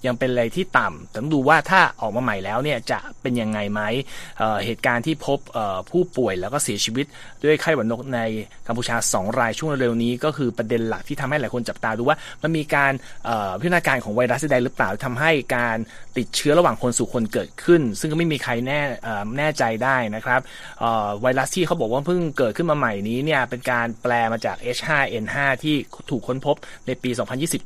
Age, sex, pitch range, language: 20-39, male, 115-145 Hz, Thai